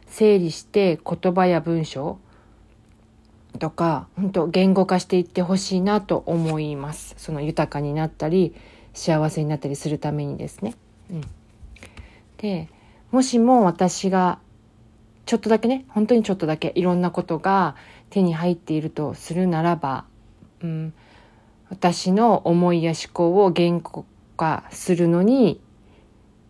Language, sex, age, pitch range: Japanese, female, 40-59, 145-185 Hz